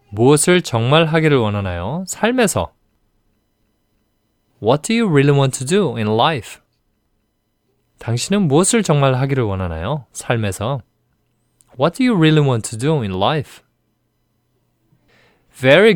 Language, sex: Korean, male